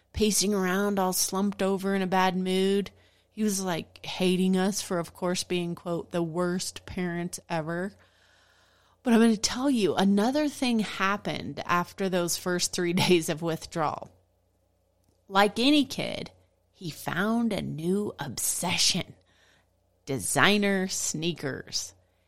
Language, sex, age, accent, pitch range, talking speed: English, female, 30-49, American, 160-210 Hz, 130 wpm